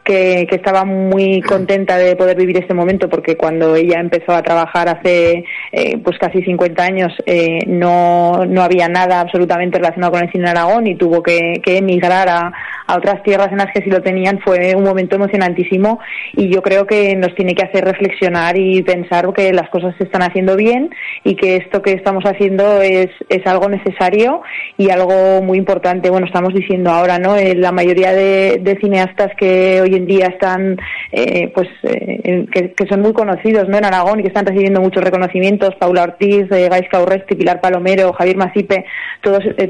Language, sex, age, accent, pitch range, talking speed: Spanish, female, 20-39, Spanish, 180-200 Hz, 195 wpm